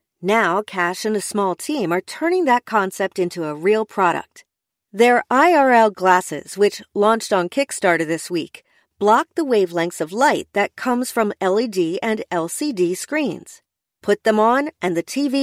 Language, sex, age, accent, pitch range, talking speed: English, female, 40-59, American, 185-260 Hz, 160 wpm